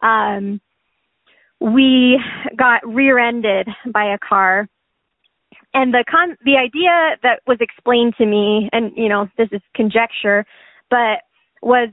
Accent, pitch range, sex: American, 215-255 Hz, female